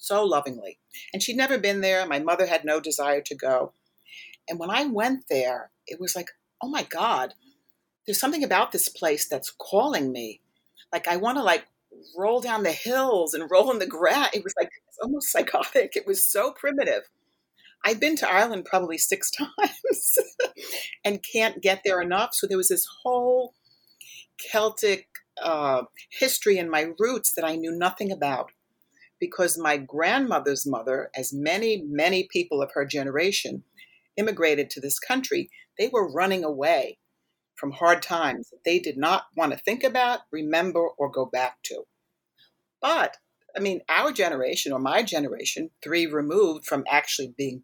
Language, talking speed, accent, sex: English, 170 wpm, American, female